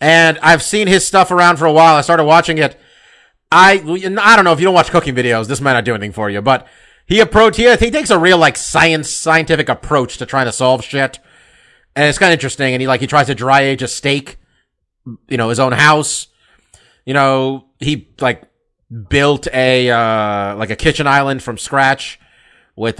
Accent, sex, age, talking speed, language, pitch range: American, male, 30-49, 210 wpm, English, 125-165 Hz